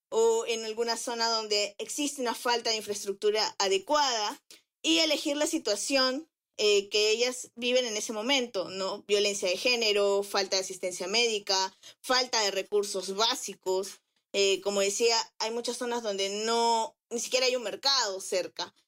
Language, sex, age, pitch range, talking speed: Spanish, female, 20-39, 210-295 Hz, 155 wpm